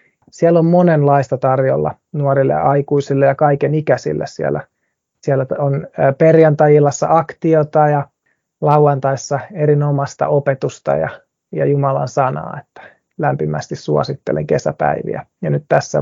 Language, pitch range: Finnish, 140-170 Hz